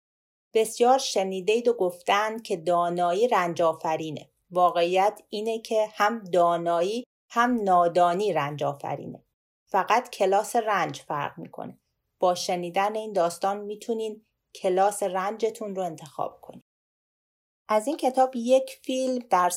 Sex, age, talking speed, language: female, 40-59, 115 wpm, Persian